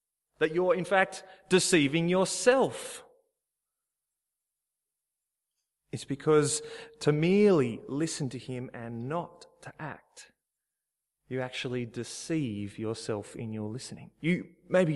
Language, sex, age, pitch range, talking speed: English, male, 30-49, 120-195 Hz, 105 wpm